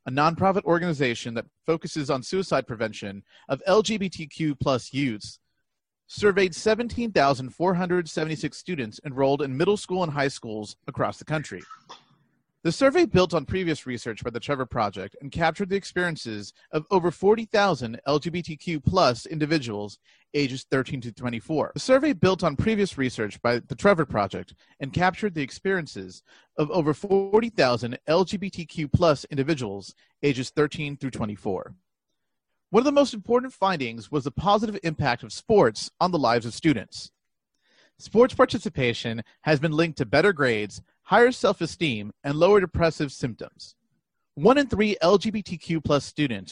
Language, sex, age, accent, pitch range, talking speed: English, male, 30-49, American, 130-185 Hz, 150 wpm